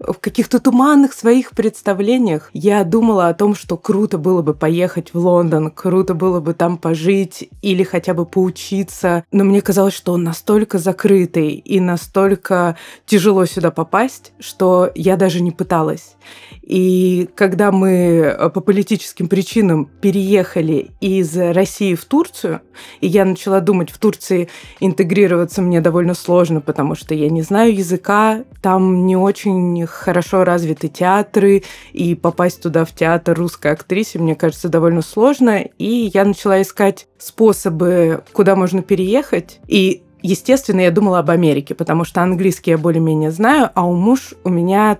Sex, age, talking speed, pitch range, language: female, 20-39, 150 wpm, 170-200 Hz, Russian